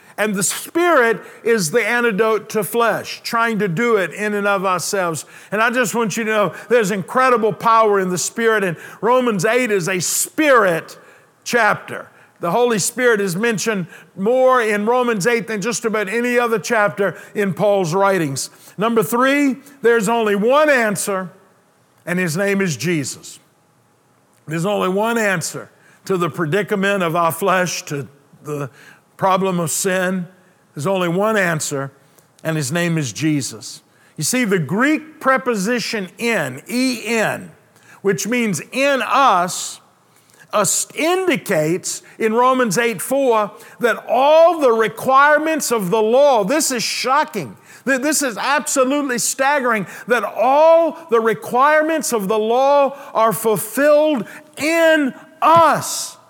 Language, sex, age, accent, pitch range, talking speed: English, male, 50-69, American, 190-250 Hz, 140 wpm